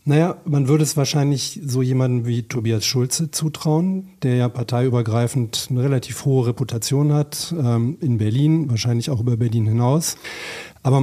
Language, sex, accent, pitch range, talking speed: German, male, German, 125-150 Hz, 145 wpm